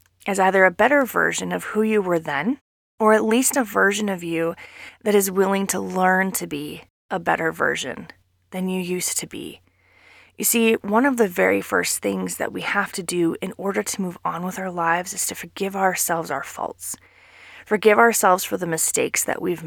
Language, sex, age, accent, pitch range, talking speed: English, female, 20-39, American, 165-210 Hz, 200 wpm